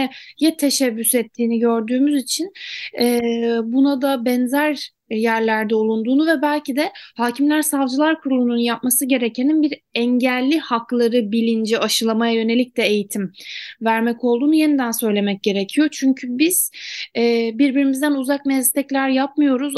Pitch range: 230-275 Hz